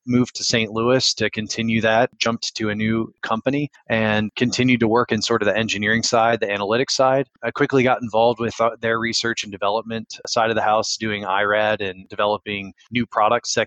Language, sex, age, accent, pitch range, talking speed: English, male, 20-39, American, 105-120 Hz, 200 wpm